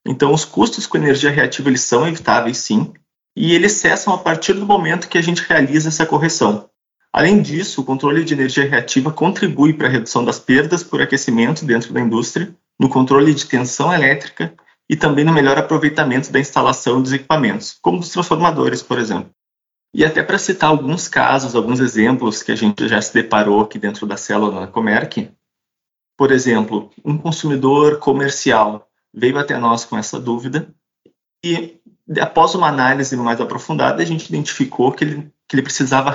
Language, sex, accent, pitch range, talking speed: Portuguese, male, Brazilian, 130-160 Hz, 175 wpm